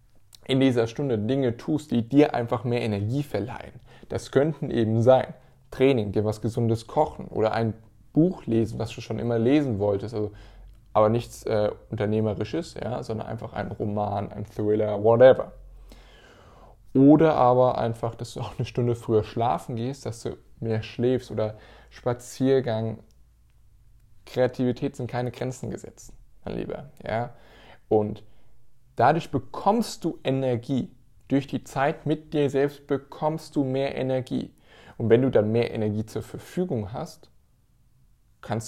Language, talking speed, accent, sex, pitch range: German, 145 wpm, German, male, 110-130 Hz